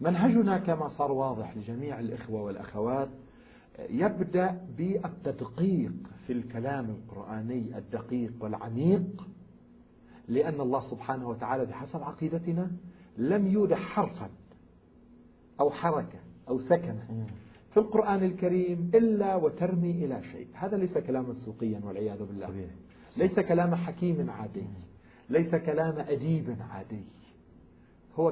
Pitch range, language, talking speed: 120-185 Hz, Arabic, 105 wpm